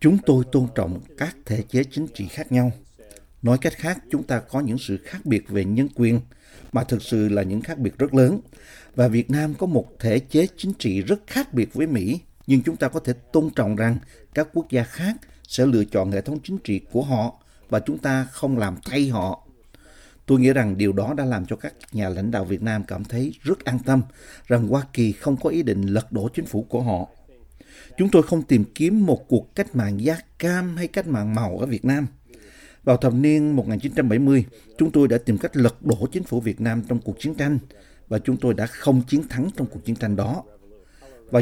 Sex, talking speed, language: male, 225 wpm, Vietnamese